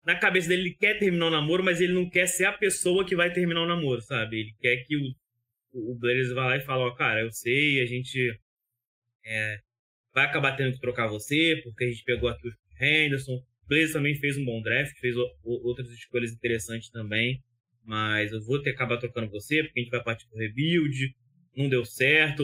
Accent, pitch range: Brazilian, 120-160 Hz